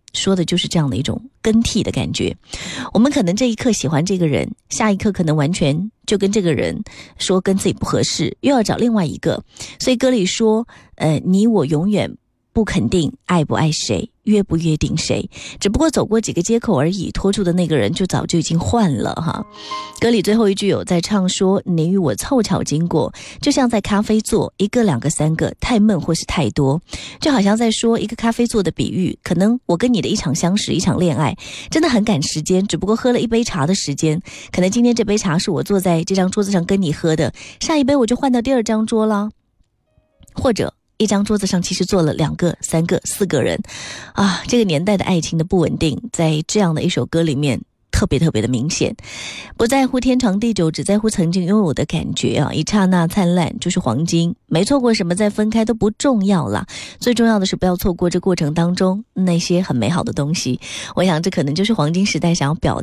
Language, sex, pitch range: Chinese, female, 160-215 Hz